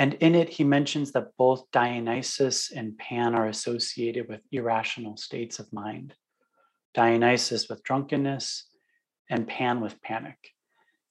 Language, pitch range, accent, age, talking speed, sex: English, 115-140 Hz, American, 30-49, 130 wpm, male